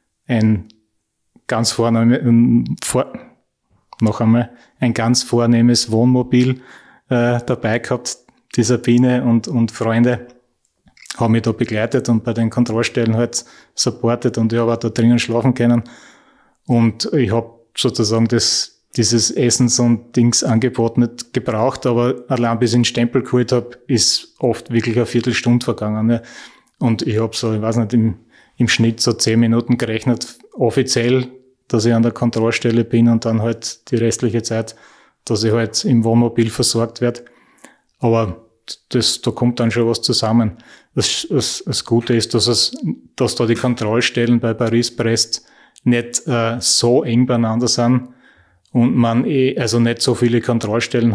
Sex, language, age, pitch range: male, German, 30-49, 115-120 Hz